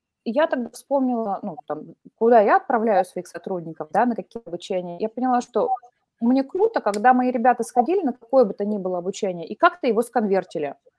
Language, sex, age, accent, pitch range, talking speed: Russian, female, 20-39, native, 205-265 Hz, 185 wpm